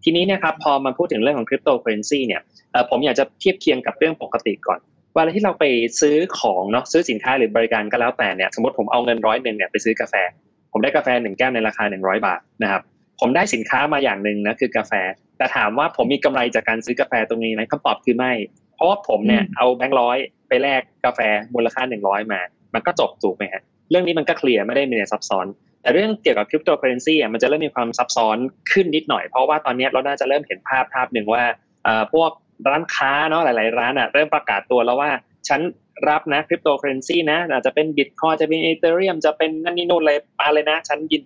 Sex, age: male, 20-39